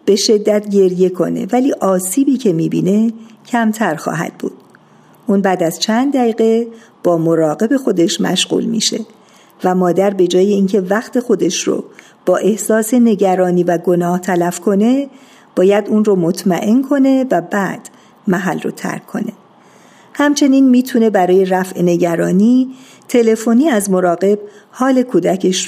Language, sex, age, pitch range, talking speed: Persian, female, 50-69, 180-230 Hz, 135 wpm